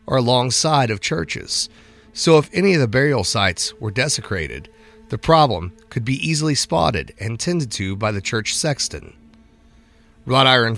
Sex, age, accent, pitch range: male, 30-49, American, 95-130 Hz